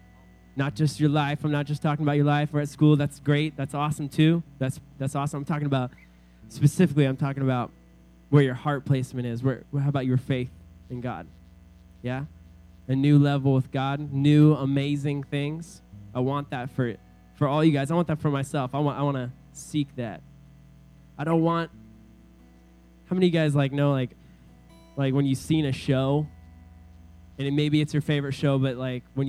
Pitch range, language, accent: 120-150 Hz, English, American